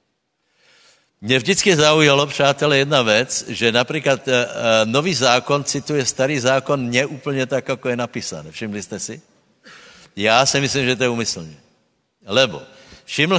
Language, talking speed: Slovak, 135 wpm